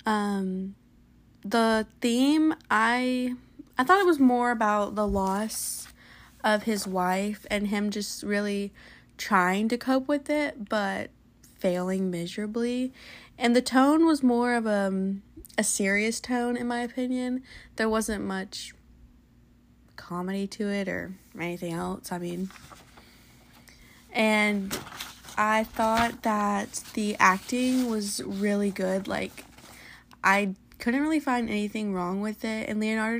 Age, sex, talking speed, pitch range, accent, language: 20-39, female, 130 wpm, 195-235 Hz, American, English